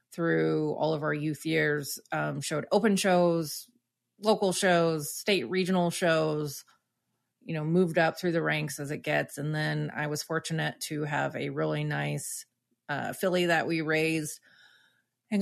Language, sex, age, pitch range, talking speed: English, female, 30-49, 150-175 Hz, 160 wpm